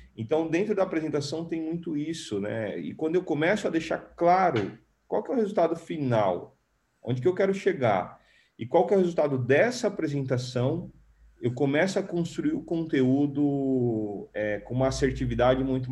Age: 30-49